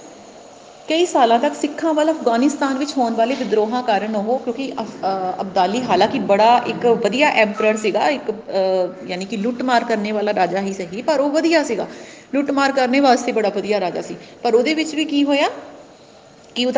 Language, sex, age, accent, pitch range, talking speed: Hindi, female, 30-49, native, 215-275 Hz, 120 wpm